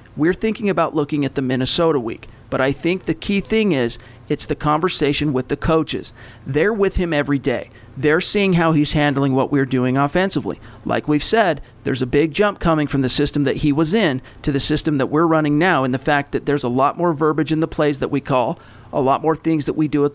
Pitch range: 130-165 Hz